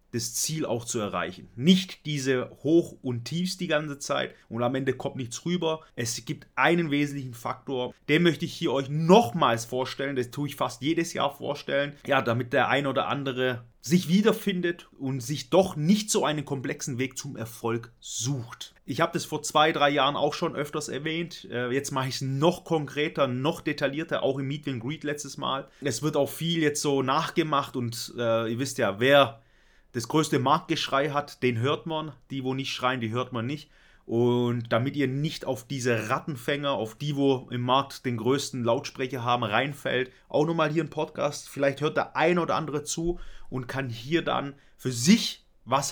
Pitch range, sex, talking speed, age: 125-155 Hz, male, 190 wpm, 30-49